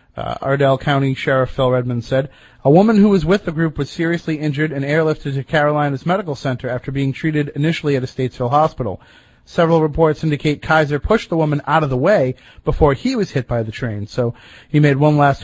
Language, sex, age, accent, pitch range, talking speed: English, male, 30-49, American, 130-155 Hz, 210 wpm